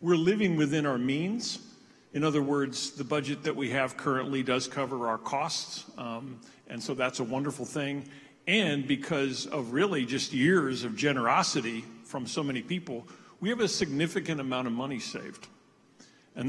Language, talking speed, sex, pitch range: English, 165 wpm, male, 130-160 Hz